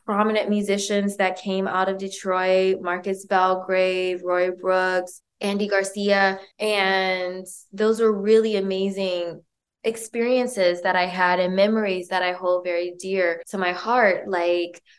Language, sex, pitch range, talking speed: English, female, 185-215 Hz, 130 wpm